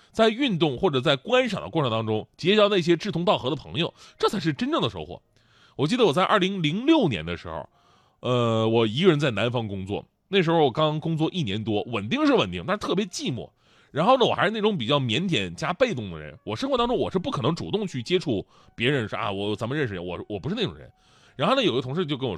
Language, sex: Chinese, male